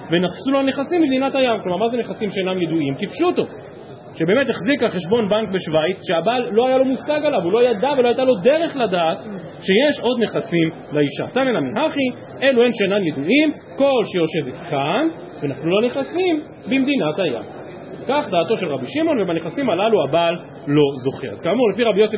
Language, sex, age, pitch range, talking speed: Hebrew, male, 40-59, 165-240 Hz, 175 wpm